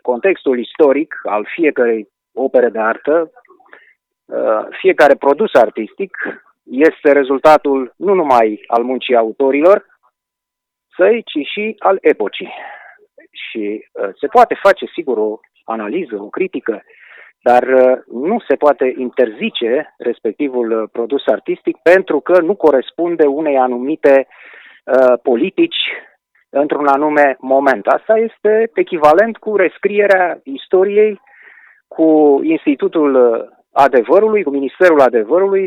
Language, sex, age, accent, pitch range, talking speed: Romanian, male, 30-49, native, 135-225 Hz, 105 wpm